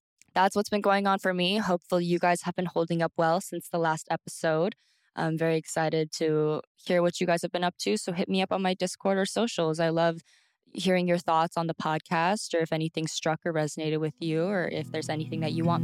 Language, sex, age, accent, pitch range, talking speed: English, female, 20-39, American, 155-175 Hz, 240 wpm